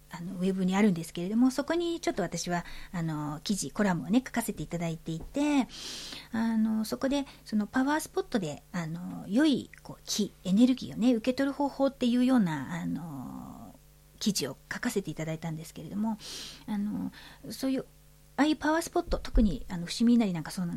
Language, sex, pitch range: Japanese, female, 170-240 Hz